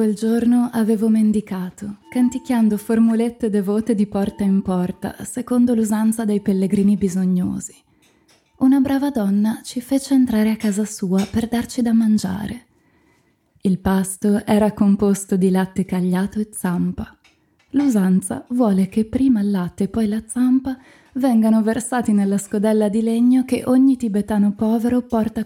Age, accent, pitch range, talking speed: 20-39, native, 195-230 Hz, 140 wpm